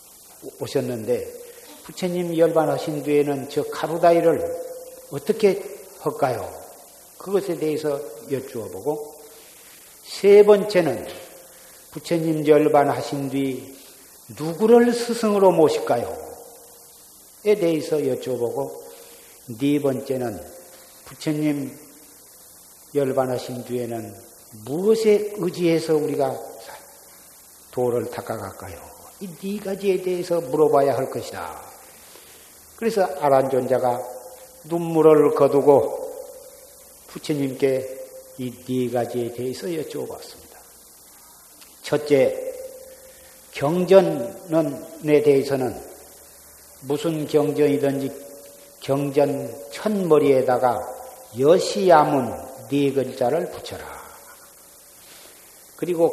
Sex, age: male, 50-69